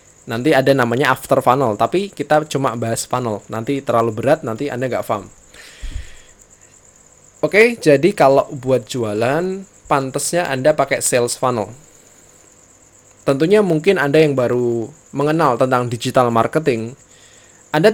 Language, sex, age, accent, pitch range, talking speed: Indonesian, male, 20-39, native, 120-155 Hz, 125 wpm